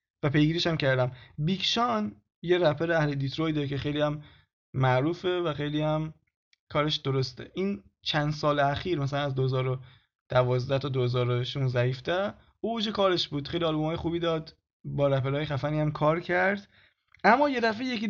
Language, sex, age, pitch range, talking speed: Persian, male, 20-39, 145-190 Hz, 150 wpm